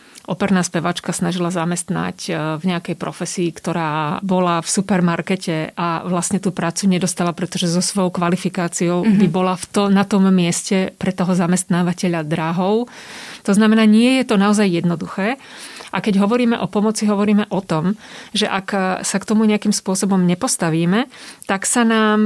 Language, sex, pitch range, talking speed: Slovak, female, 175-205 Hz, 150 wpm